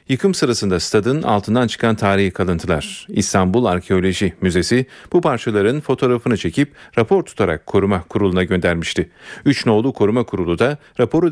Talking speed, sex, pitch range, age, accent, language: 125 wpm, male, 100-130 Hz, 40-59, native, Turkish